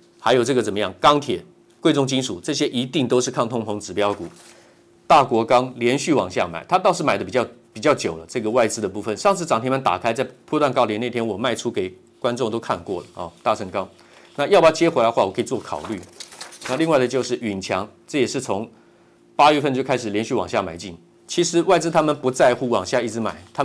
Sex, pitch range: male, 115-145 Hz